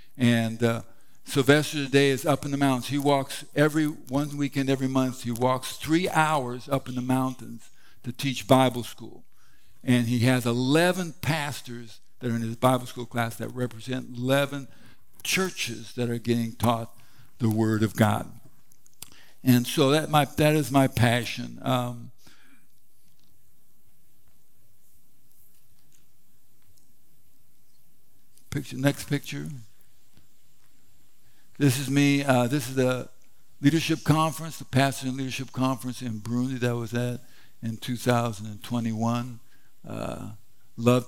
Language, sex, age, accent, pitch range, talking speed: English, male, 60-79, American, 115-135 Hz, 130 wpm